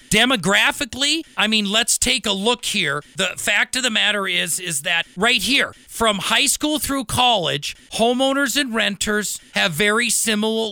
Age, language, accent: 40-59, English, American